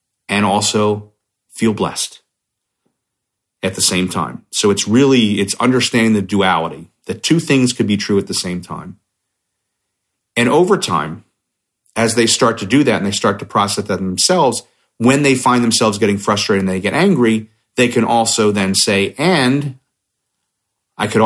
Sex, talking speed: male, 165 wpm